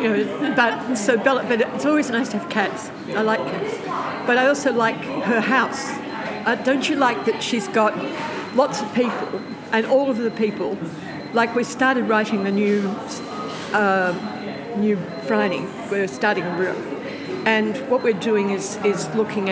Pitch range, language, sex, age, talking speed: 205-255 Hz, English, female, 50-69, 160 wpm